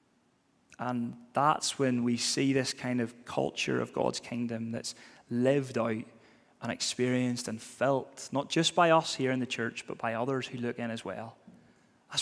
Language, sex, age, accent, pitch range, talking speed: English, male, 30-49, British, 120-140 Hz, 175 wpm